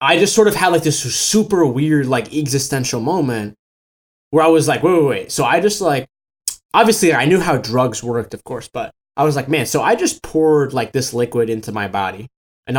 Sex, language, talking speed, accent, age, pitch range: male, English, 220 wpm, American, 20-39, 125-165 Hz